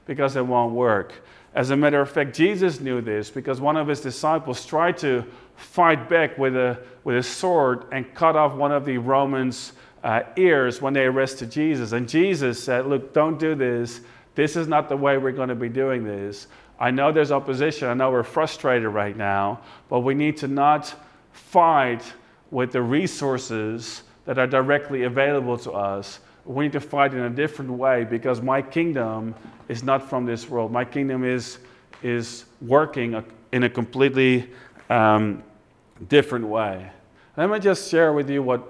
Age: 40-59